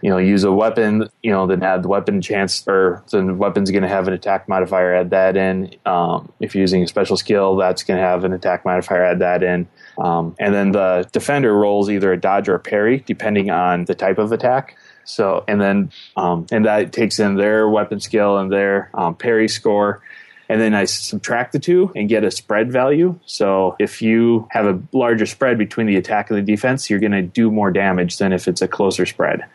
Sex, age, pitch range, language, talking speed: male, 20-39, 95-110 Hz, English, 225 wpm